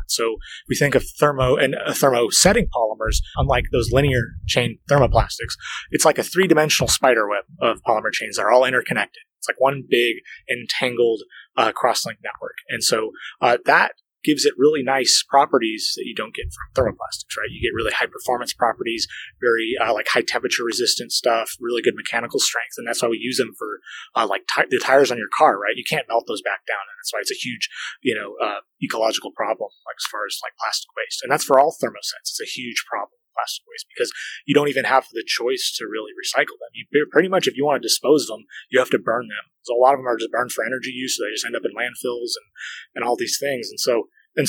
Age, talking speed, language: 20-39, 230 wpm, English